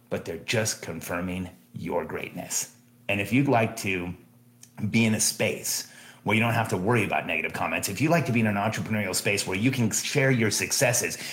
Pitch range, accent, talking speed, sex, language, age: 95-120 Hz, American, 205 wpm, male, English, 30-49